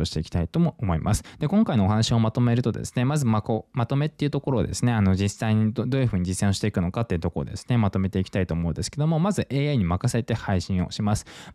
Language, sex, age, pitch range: Japanese, male, 20-39, 95-135 Hz